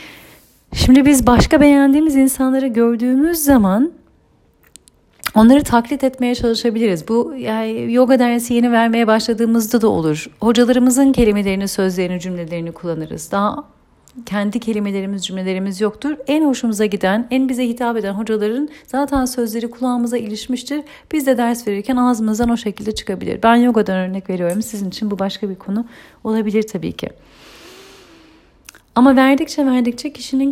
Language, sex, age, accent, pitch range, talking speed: Turkish, female, 40-59, native, 210-265 Hz, 130 wpm